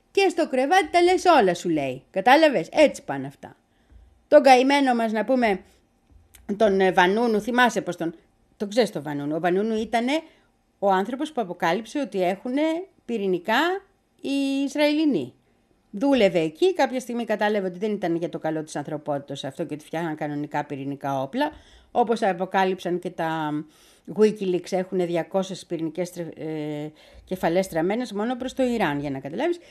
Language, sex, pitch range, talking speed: Greek, female, 165-280 Hz, 155 wpm